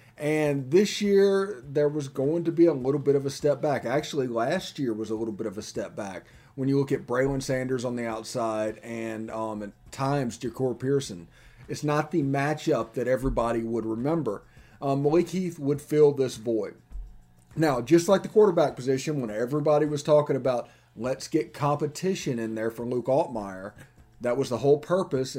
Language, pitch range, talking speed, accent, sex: English, 120-145 Hz, 190 wpm, American, male